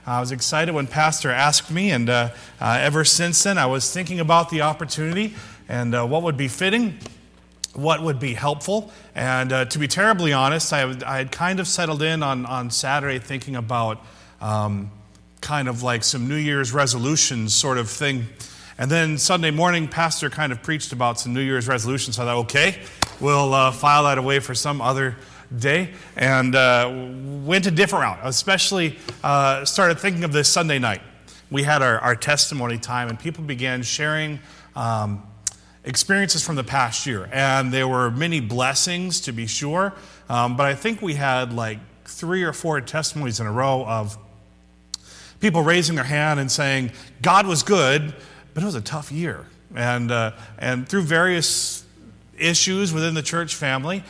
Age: 40-59